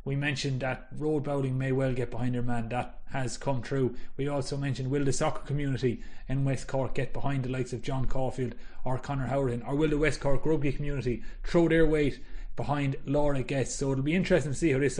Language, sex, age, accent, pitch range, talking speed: English, male, 30-49, Irish, 130-155 Hz, 225 wpm